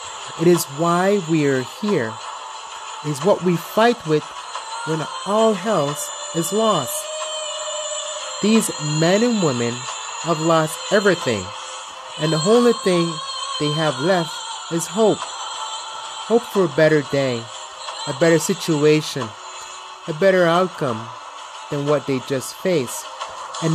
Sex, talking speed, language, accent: male, 125 wpm, English, American